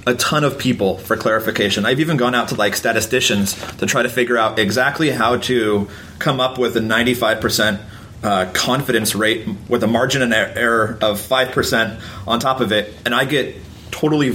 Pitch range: 105-130 Hz